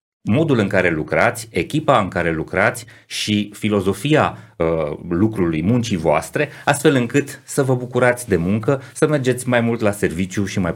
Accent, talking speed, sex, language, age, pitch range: native, 155 wpm, male, Romanian, 30-49, 95-125 Hz